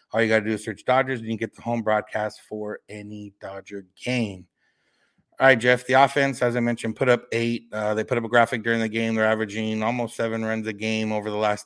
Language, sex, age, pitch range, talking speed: English, male, 30-49, 110-125 Hz, 245 wpm